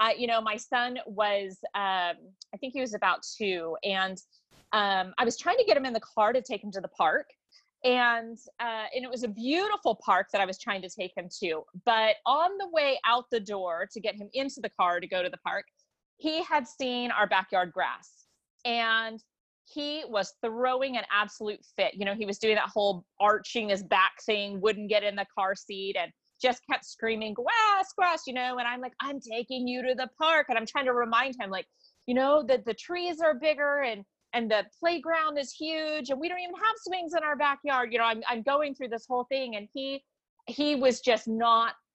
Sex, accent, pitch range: female, American, 205-270 Hz